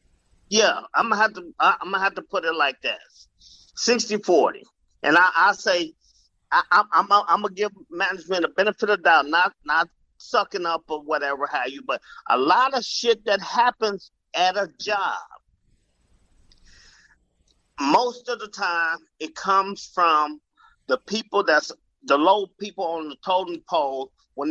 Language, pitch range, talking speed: English, 160-210 Hz, 160 wpm